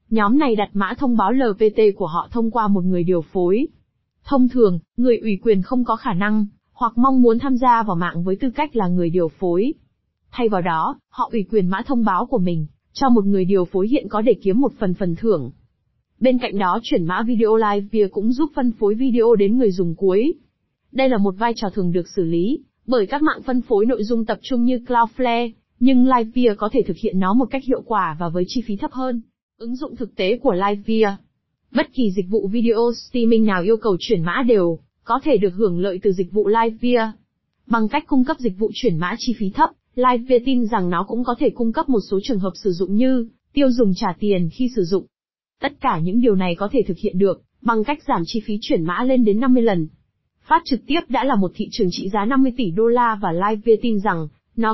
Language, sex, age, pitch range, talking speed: Vietnamese, female, 20-39, 195-245 Hz, 240 wpm